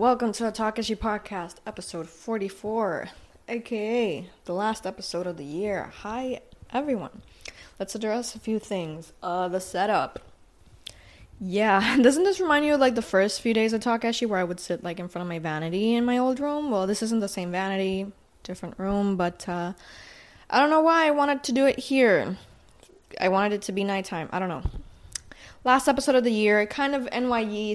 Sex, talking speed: female, 190 wpm